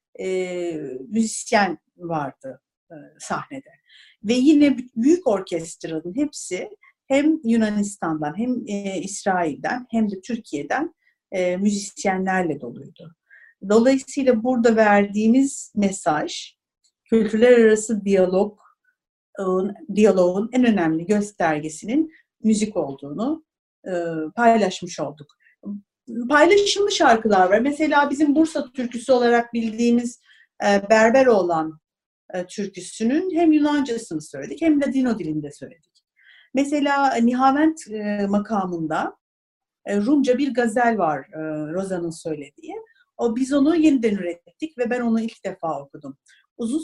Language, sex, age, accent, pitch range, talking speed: Turkish, female, 50-69, native, 185-265 Hz, 110 wpm